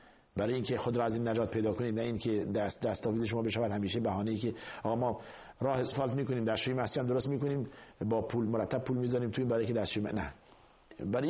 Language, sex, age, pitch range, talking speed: Persian, male, 50-69, 105-130 Hz, 220 wpm